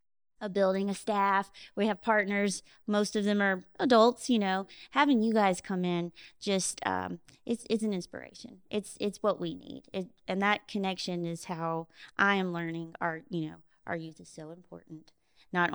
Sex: female